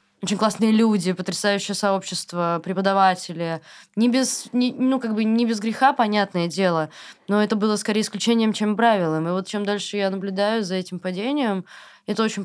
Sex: female